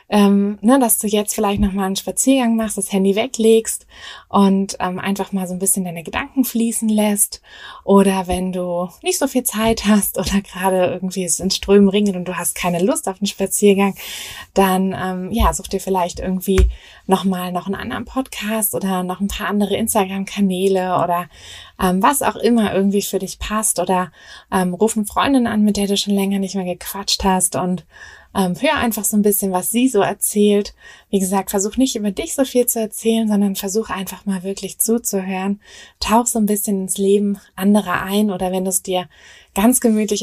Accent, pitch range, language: German, 185-215 Hz, German